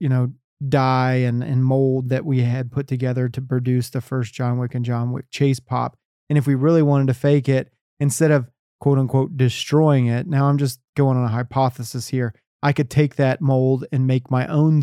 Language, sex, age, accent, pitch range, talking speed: English, male, 30-49, American, 130-145 Hz, 215 wpm